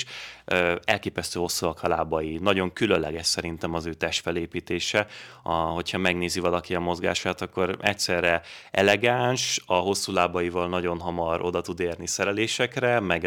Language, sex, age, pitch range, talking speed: Hungarian, male, 30-49, 85-95 Hz, 125 wpm